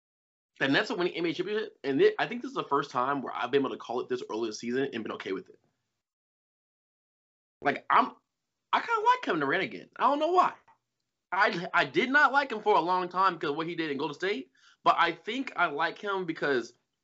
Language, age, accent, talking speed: English, 20-39, American, 245 wpm